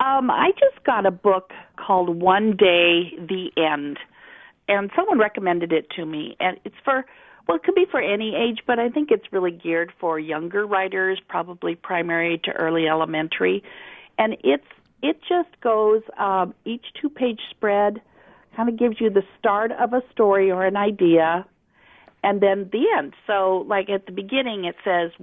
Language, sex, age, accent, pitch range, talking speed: English, female, 50-69, American, 170-215 Hz, 175 wpm